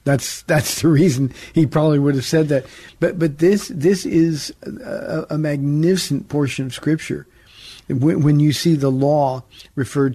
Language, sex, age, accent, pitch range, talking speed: English, male, 50-69, American, 140-170 Hz, 165 wpm